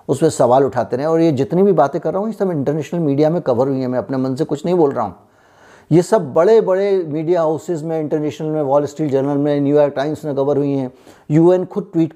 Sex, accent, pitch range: male, native, 130-160 Hz